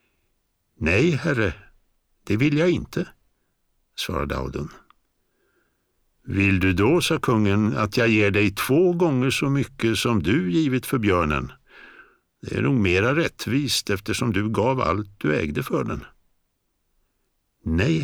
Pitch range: 100-150 Hz